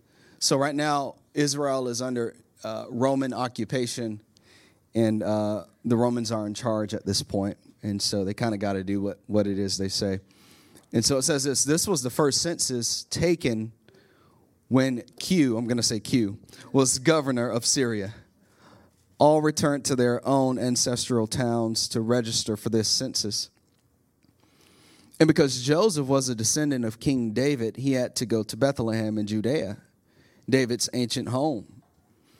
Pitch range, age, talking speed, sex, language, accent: 110-135 Hz, 30-49, 160 wpm, male, English, American